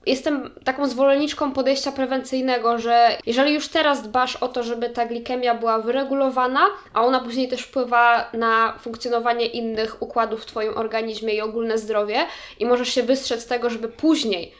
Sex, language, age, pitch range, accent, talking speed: female, Polish, 20-39, 235-275 Hz, native, 165 wpm